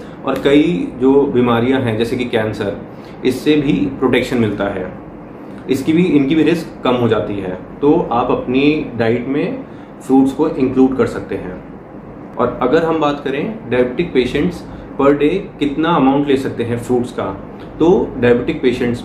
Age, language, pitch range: 30-49, Hindi, 120-150 Hz